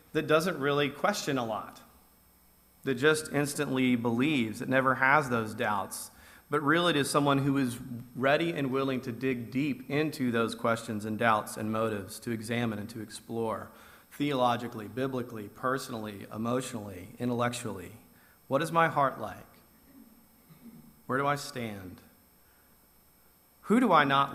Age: 40-59